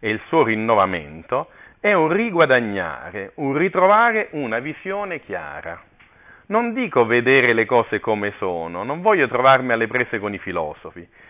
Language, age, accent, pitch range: Italian, 40-59, native, 120-185 Hz